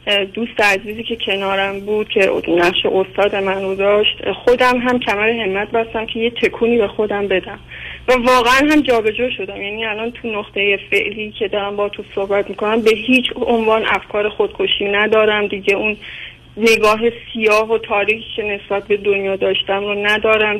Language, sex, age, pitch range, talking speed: Persian, female, 30-49, 200-245 Hz, 165 wpm